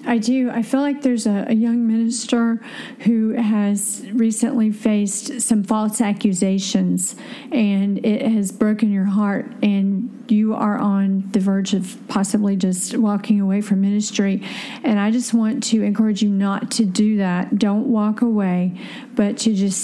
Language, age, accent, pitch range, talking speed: English, 40-59, American, 205-240 Hz, 160 wpm